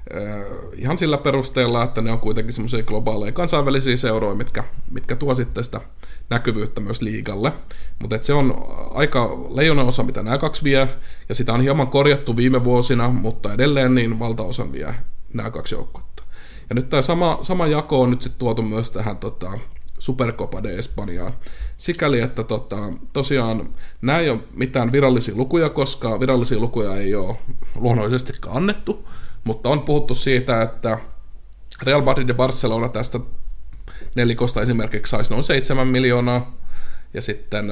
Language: Finnish